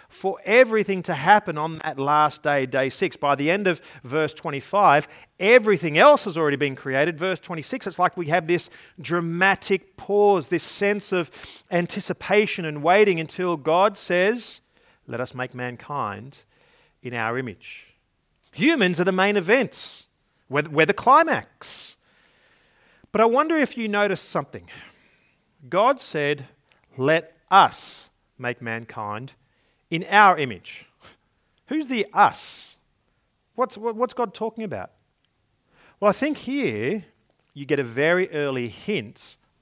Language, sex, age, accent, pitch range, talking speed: English, male, 40-59, Australian, 140-205 Hz, 135 wpm